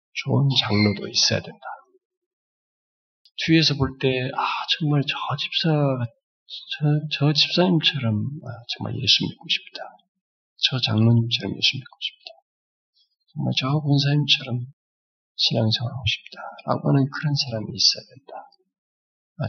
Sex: male